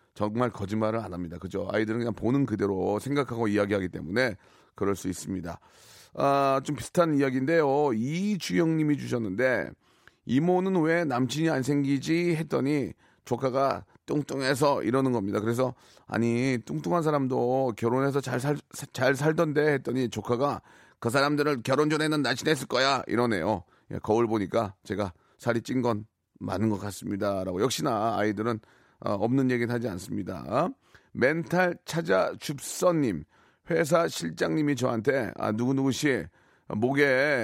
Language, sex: Korean, male